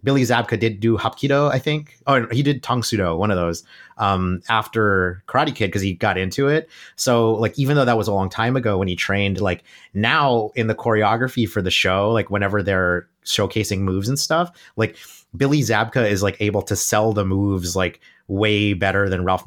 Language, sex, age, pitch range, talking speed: English, male, 30-49, 95-115 Hz, 205 wpm